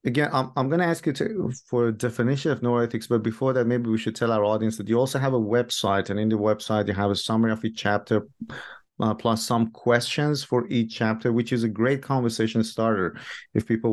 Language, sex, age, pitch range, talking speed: English, male, 30-49, 110-120 Hz, 230 wpm